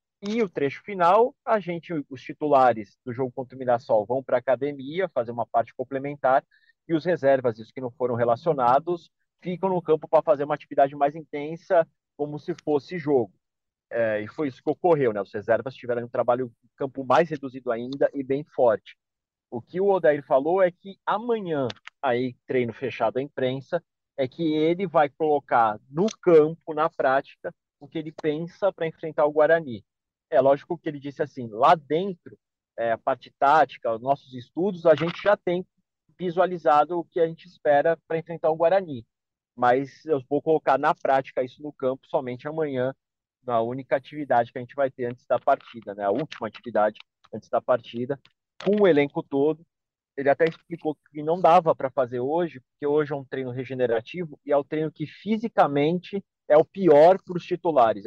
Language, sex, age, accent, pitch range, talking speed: Portuguese, male, 40-59, Brazilian, 130-165 Hz, 185 wpm